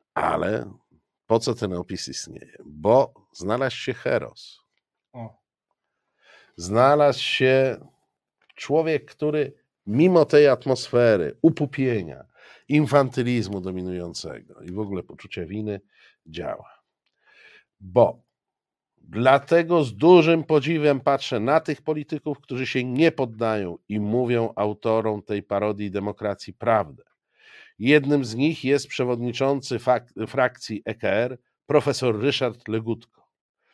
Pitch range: 105-140 Hz